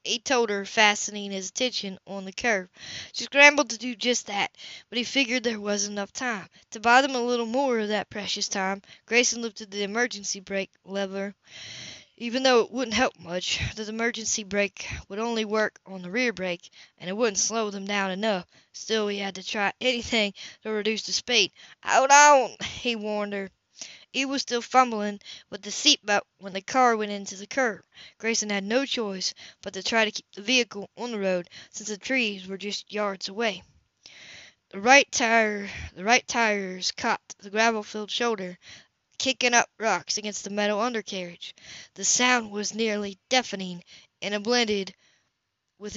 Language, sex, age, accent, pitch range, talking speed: English, female, 20-39, American, 200-240 Hz, 175 wpm